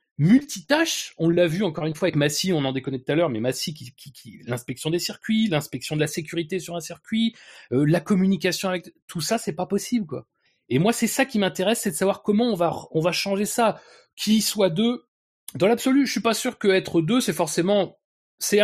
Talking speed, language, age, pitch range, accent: 225 wpm, French, 30-49, 150-215 Hz, French